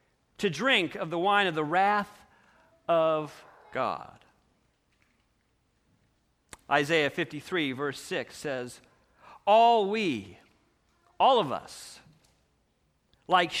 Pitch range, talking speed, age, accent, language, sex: 180-250 Hz, 95 wpm, 50-69, American, English, male